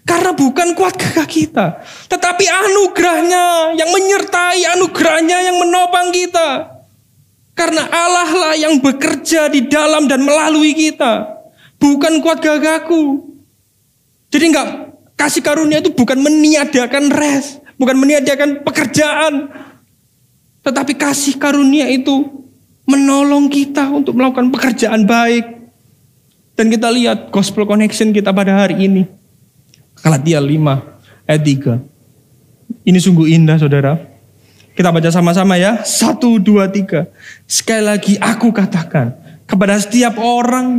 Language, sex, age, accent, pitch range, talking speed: Indonesian, male, 20-39, native, 200-310 Hz, 115 wpm